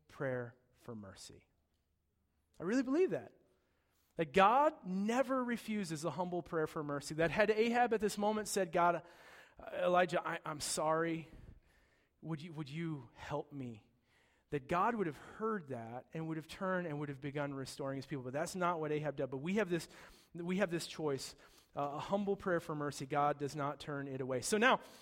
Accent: American